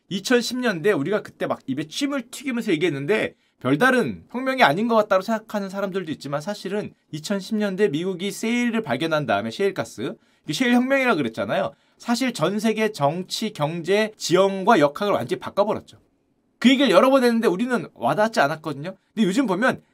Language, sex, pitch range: Korean, male, 195-260 Hz